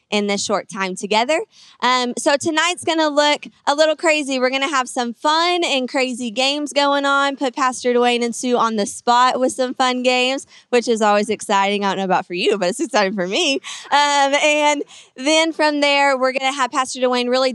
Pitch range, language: 220-265 Hz, English